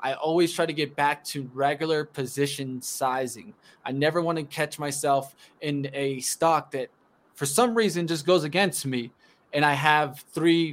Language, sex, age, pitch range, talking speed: English, male, 20-39, 140-170 Hz, 175 wpm